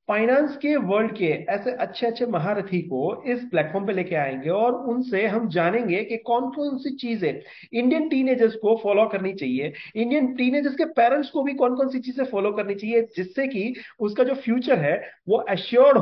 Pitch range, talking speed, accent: 190-255 Hz, 90 wpm, native